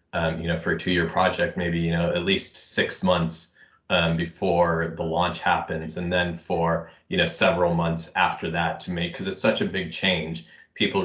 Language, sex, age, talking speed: English, male, 20-39, 200 wpm